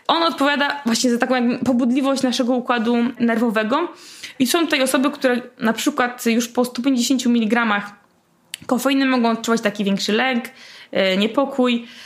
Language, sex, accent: Polish, female, native